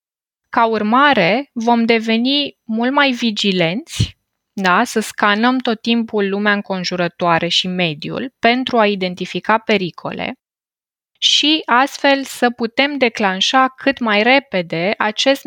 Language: Romanian